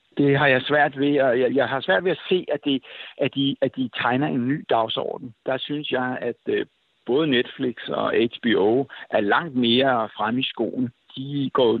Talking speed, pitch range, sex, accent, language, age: 195 wpm, 120-145 Hz, male, native, Danish, 60-79